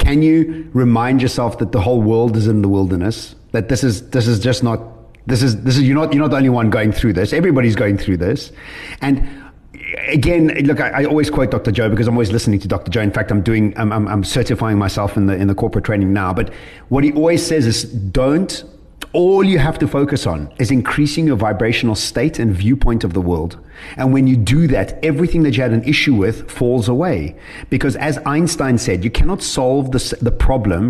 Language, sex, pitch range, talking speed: English, male, 110-145 Hz, 225 wpm